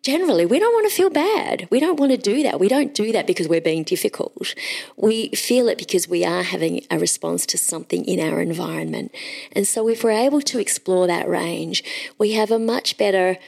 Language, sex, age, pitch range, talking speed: English, female, 40-59, 170-220 Hz, 220 wpm